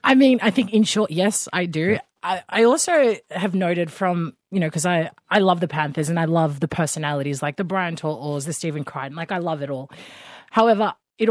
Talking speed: 225 wpm